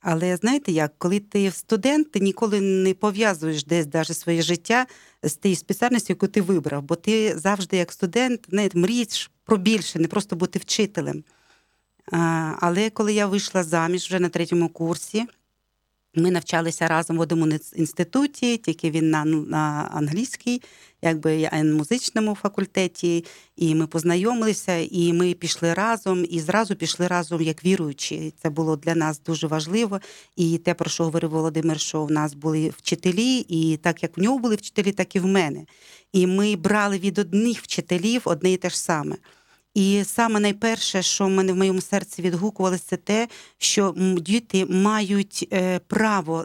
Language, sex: Ukrainian, female